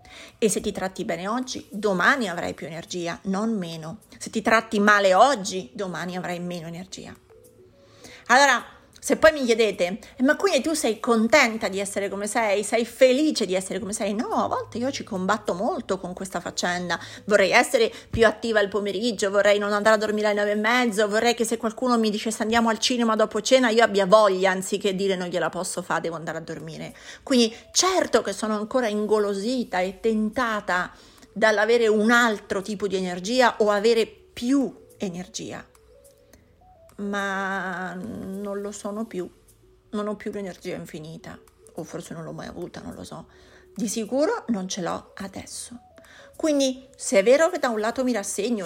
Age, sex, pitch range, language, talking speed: 30-49, female, 190-235 Hz, Italian, 175 wpm